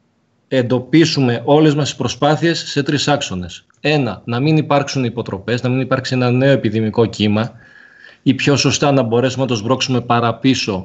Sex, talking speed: male, 155 wpm